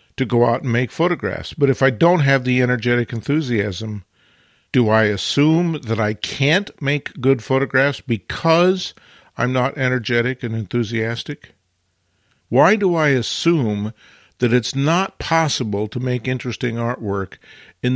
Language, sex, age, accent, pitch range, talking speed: English, male, 50-69, American, 110-140 Hz, 140 wpm